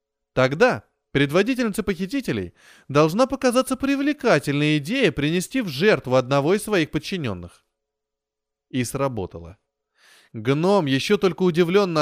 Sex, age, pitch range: male, 20-39, 140-205 Hz